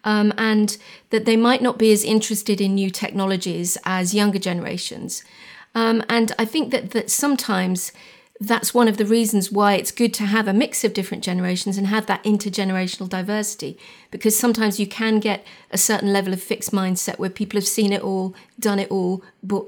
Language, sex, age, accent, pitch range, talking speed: English, female, 40-59, British, 200-230 Hz, 190 wpm